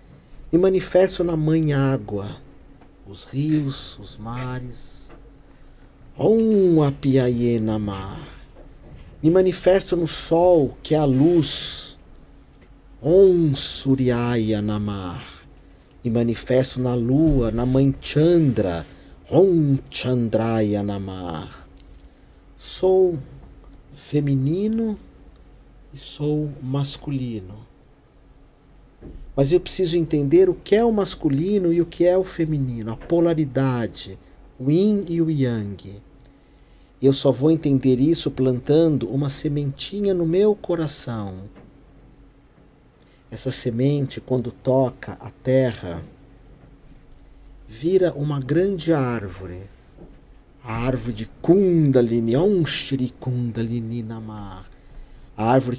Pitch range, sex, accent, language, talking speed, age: 115-160 Hz, male, Brazilian, Portuguese, 100 wpm, 40-59